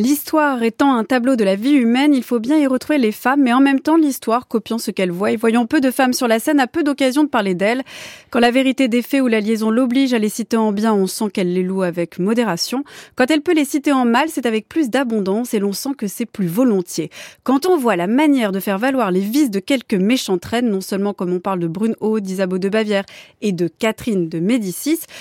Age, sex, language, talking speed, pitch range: 20-39, female, French, 250 wpm, 205-275 Hz